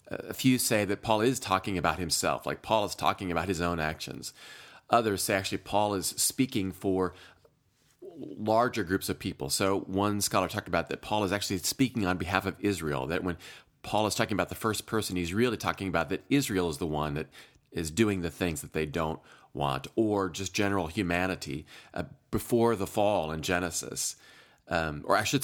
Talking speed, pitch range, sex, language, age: 195 wpm, 85-105 Hz, male, English, 30-49